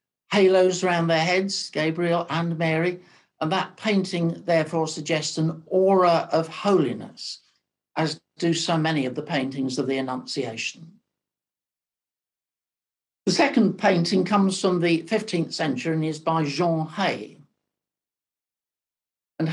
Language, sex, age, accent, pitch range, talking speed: English, male, 60-79, British, 150-185 Hz, 125 wpm